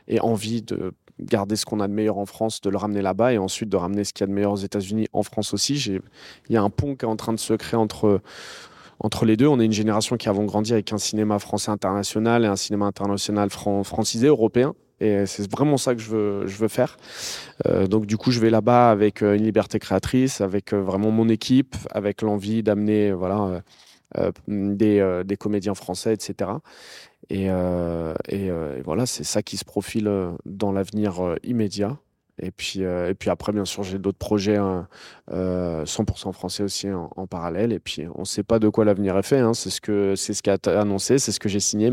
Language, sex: French, male